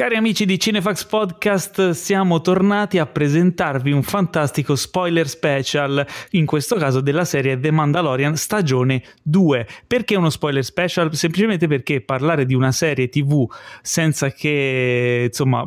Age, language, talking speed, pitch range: 30-49, Italian, 140 wpm, 130-165 Hz